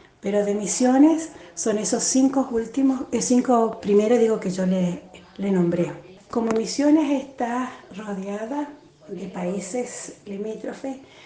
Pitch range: 205-265 Hz